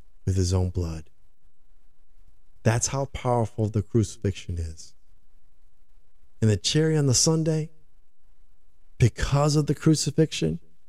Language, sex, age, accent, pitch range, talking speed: English, male, 50-69, American, 95-125 Hz, 110 wpm